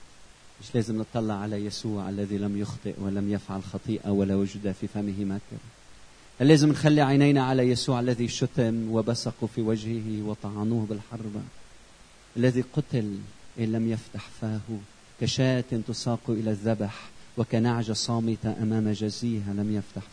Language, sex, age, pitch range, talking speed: Arabic, male, 40-59, 105-130 Hz, 130 wpm